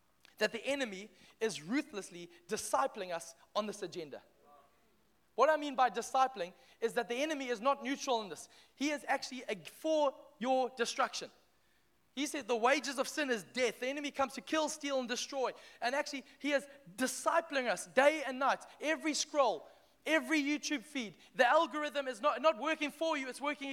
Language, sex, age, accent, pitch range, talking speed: English, male, 20-39, South African, 230-285 Hz, 175 wpm